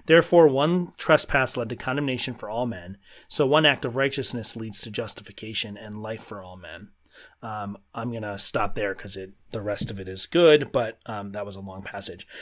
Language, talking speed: English, 205 wpm